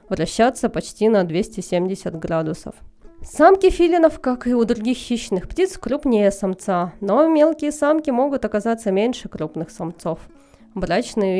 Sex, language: female, Russian